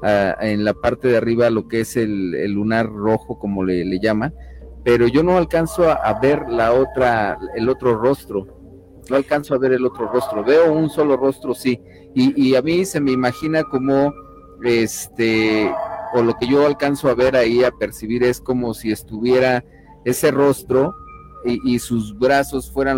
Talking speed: 185 wpm